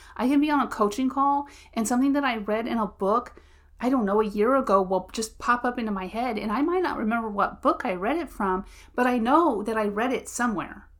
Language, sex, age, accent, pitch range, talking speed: English, female, 30-49, American, 195-255 Hz, 255 wpm